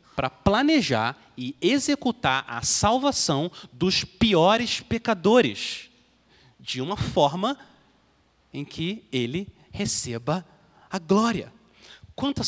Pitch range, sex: 125-200 Hz, male